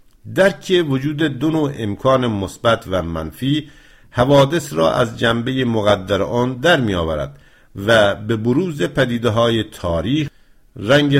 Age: 50-69